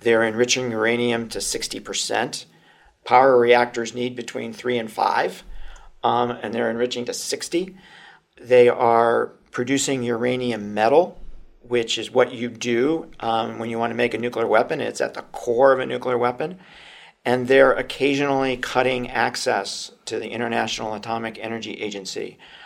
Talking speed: 145 wpm